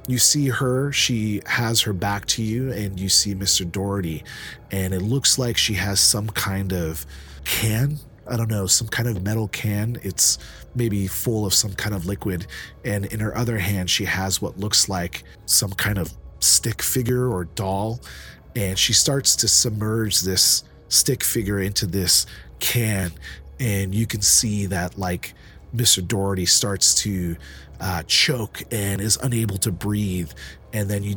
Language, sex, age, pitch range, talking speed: English, male, 30-49, 95-110 Hz, 170 wpm